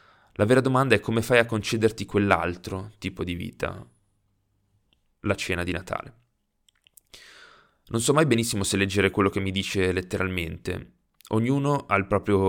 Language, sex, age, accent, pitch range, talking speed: Italian, male, 20-39, native, 95-110 Hz, 150 wpm